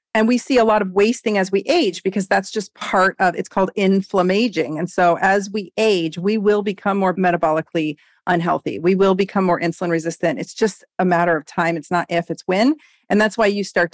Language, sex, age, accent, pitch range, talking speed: English, female, 40-59, American, 175-210 Hz, 220 wpm